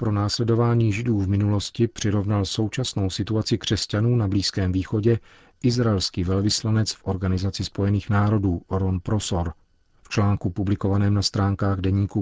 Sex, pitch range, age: male, 95-110 Hz, 40-59